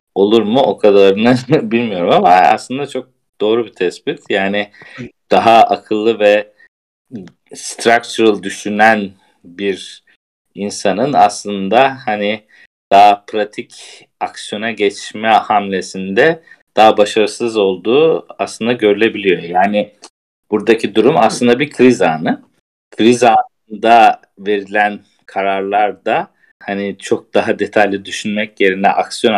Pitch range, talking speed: 95-110 Hz, 100 wpm